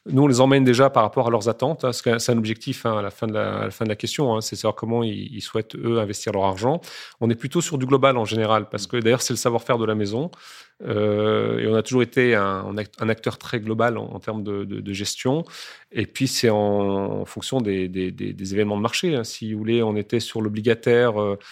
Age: 30-49